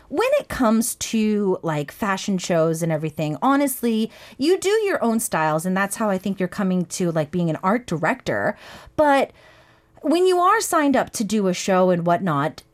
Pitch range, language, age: 215-315 Hz, English, 30-49